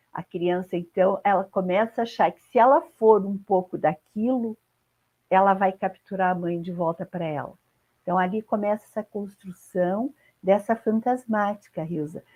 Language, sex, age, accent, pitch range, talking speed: Portuguese, female, 50-69, Brazilian, 180-235 Hz, 150 wpm